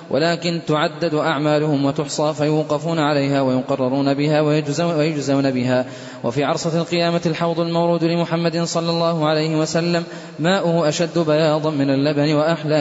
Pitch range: 140-170 Hz